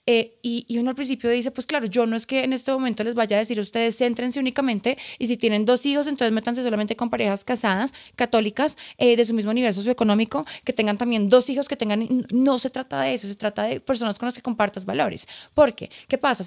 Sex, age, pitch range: female, 30-49, 210-250 Hz